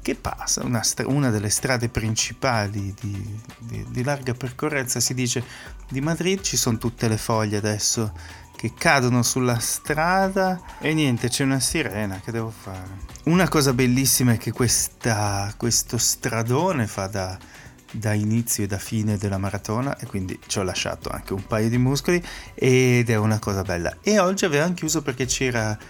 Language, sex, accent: Italian, male, native